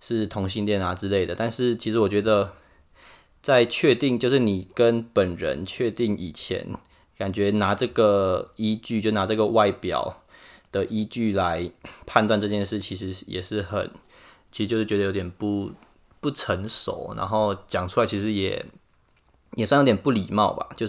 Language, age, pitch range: Chinese, 20-39, 100-115 Hz